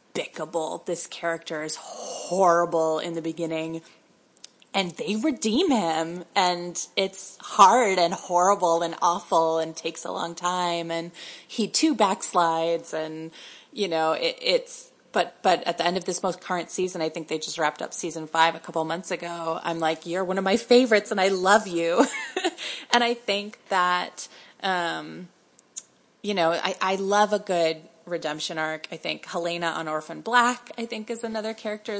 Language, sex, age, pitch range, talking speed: English, female, 20-39, 165-205 Hz, 170 wpm